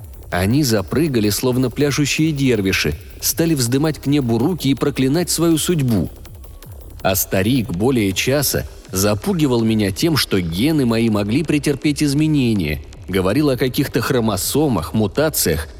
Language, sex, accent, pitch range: Russian, male, native, 100-155 Hz